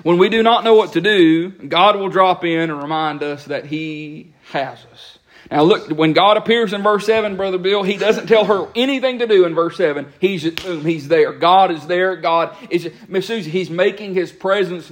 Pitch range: 160-195 Hz